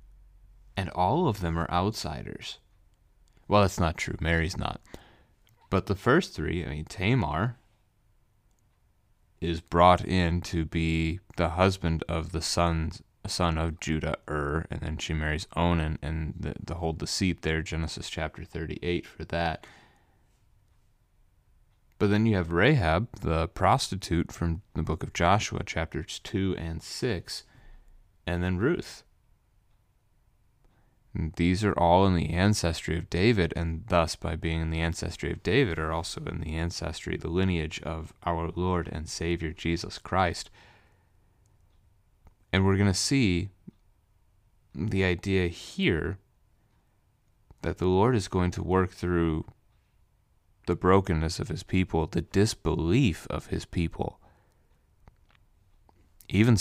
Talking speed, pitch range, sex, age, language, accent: 135 wpm, 80-100 Hz, male, 30-49, English, American